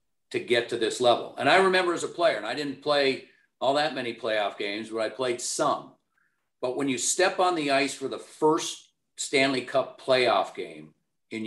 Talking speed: 205 wpm